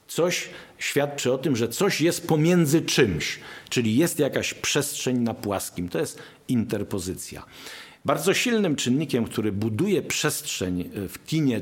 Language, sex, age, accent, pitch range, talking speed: Polish, male, 50-69, native, 105-140 Hz, 135 wpm